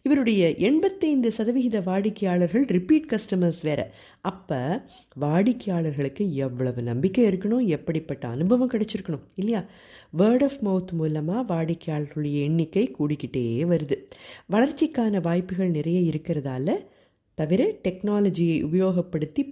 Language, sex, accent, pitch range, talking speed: Tamil, female, native, 155-215 Hz, 95 wpm